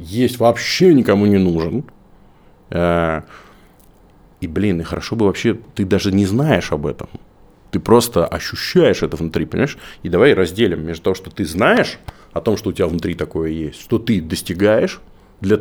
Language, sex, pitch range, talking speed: Russian, male, 85-105 Hz, 165 wpm